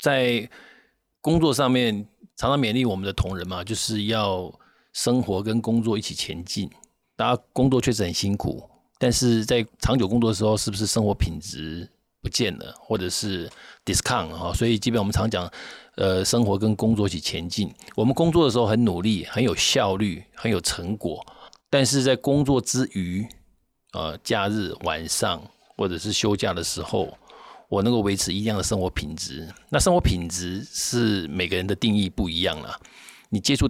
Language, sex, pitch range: Chinese, male, 95-120 Hz